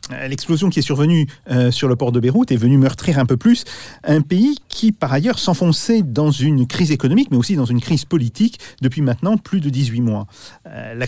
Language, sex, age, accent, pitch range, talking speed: French, male, 40-59, French, 120-170 Hz, 205 wpm